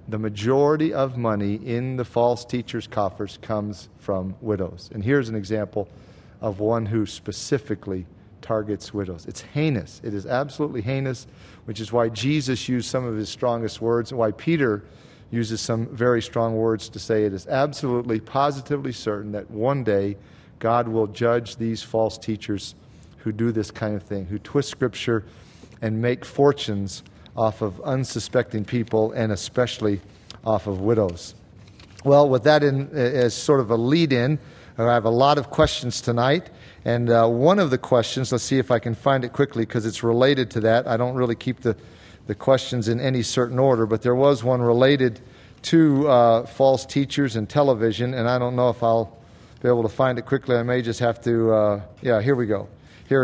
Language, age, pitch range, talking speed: English, 40-59, 110-130 Hz, 185 wpm